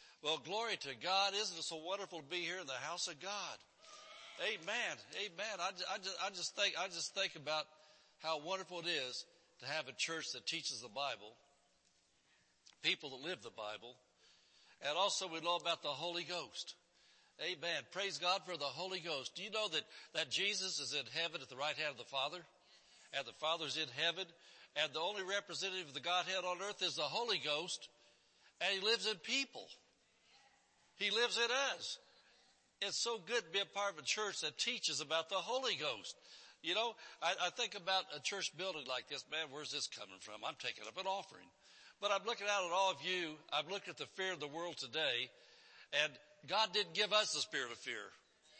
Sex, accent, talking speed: male, American, 205 wpm